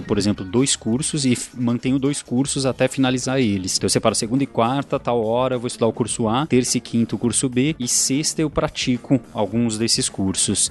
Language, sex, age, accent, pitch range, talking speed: Portuguese, male, 20-39, Brazilian, 120-150 Hz, 205 wpm